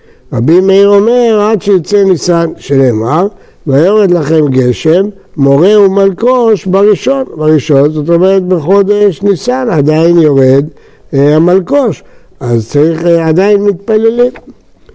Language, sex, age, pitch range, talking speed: Hebrew, male, 60-79, 150-200 Hz, 110 wpm